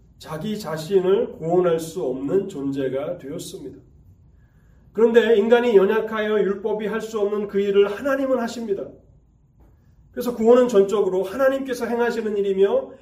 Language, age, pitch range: Korean, 30-49, 145-205 Hz